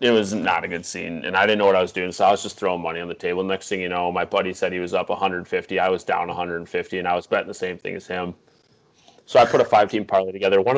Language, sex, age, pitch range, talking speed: English, male, 20-39, 95-110 Hz, 305 wpm